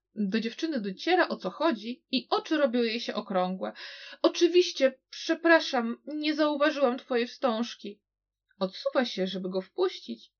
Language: Polish